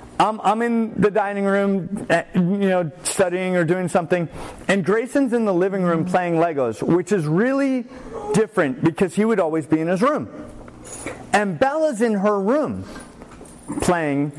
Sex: male